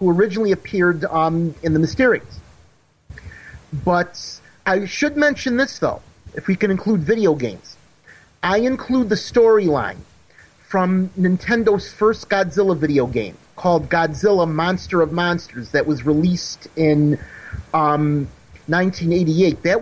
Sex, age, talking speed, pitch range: male, 40-59, 125 wpm, 160-205 Hz